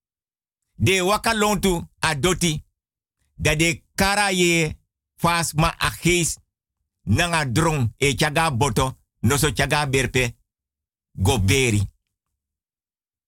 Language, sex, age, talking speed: Dutch, male, 50-69, 70 wpm